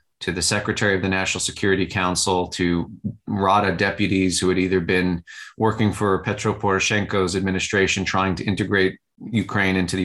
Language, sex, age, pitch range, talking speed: English, male, 30-49, 90-105 Hz, 155 wpm